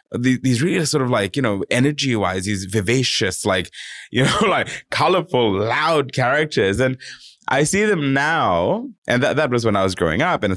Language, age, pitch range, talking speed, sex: English, 20-39, 100-145 Hz, 195 wpm, male